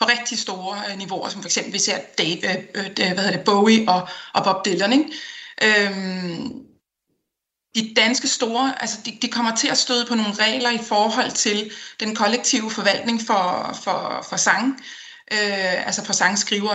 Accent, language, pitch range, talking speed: native, Danish, 205-240 Hz, 170 wpm